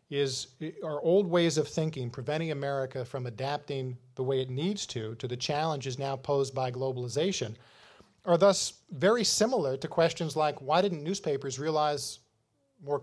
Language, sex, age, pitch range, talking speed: English, male, 40-59, 135-170 Hz, 155 wpm